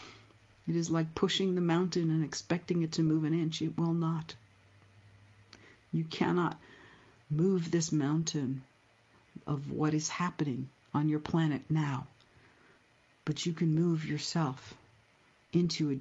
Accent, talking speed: American, 135 wpm